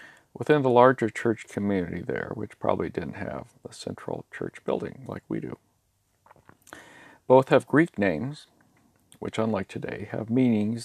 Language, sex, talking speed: English, male, 145 wpm